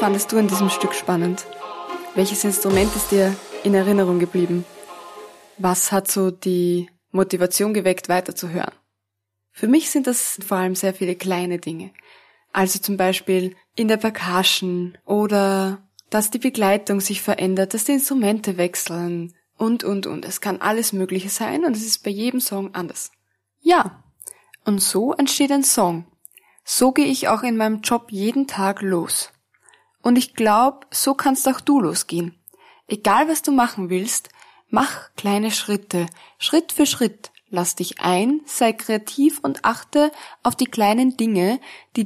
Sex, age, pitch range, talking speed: female, 20-39, 185-225 Hz, 155 wpm